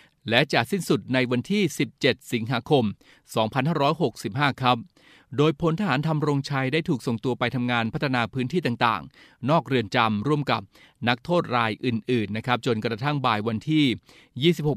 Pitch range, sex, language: 115-140 Hz, male, Thai